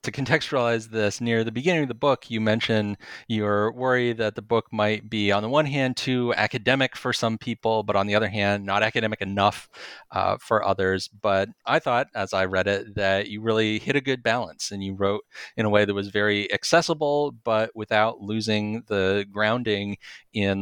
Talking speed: 200 wpm